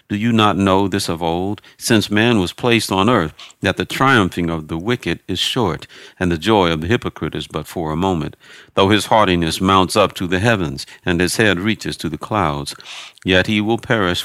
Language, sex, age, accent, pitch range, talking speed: English, male, 50-69, American, 85-105 Hz, 215 wpm